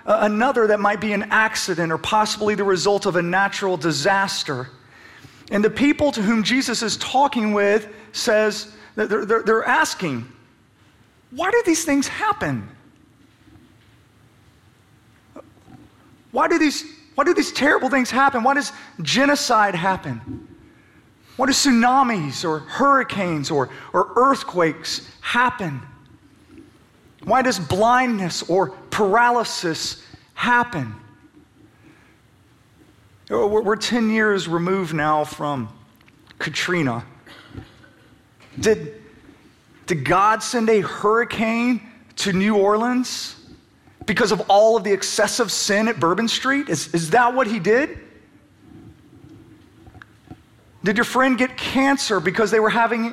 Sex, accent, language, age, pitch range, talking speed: male, American, English, 30-49, 180-245 Hz, 115 wpm